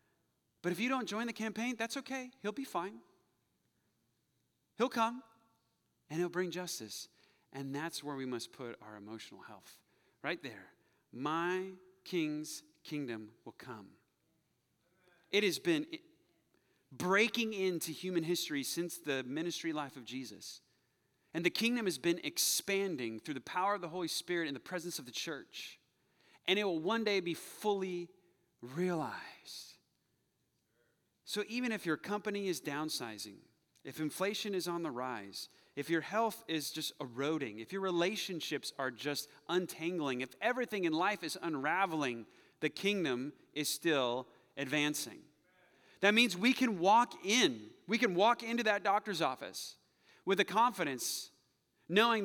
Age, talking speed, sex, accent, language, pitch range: 30-49, 145 wpm, male, American, English, 155-225 Hz